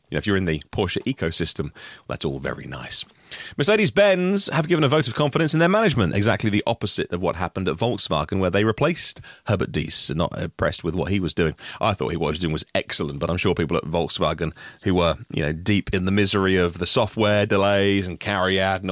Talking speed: 230 wpm